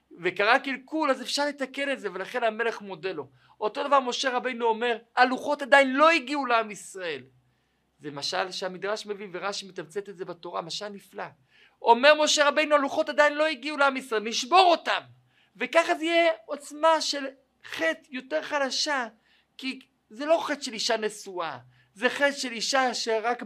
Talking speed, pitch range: 165 wpm, 200-275 Hz